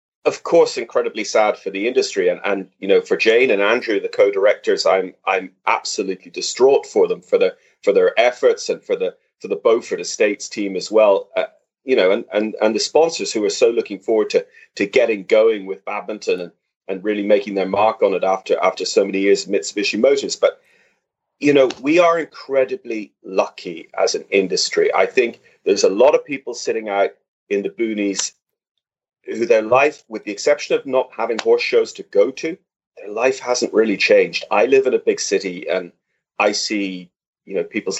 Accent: British